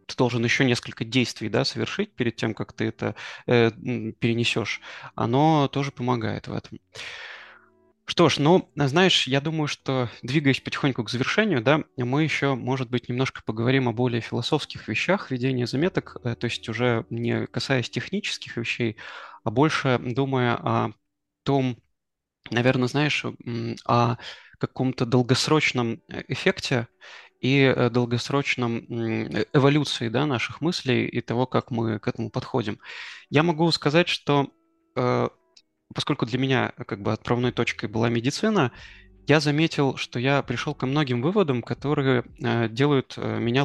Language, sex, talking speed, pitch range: Russian, male, 135 wpm, 115-145 Hz